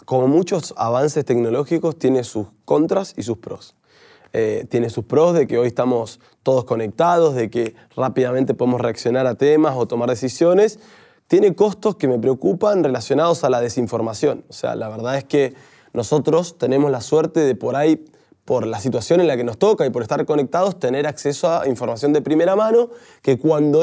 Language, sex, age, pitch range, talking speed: Spanish, male, 20-39, 135-180 Hz, 185 wpm